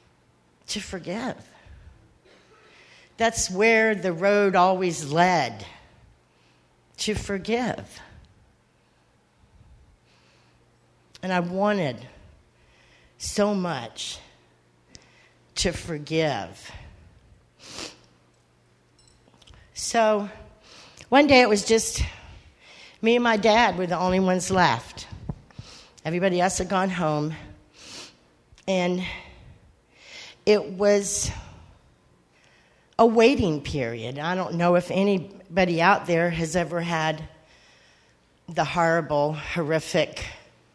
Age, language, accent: 50-69, English, American